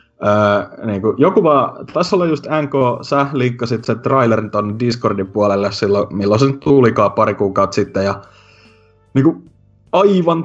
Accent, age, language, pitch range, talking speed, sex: native, 30-49, Finnish, 100-130 Hz, 160 wpm, male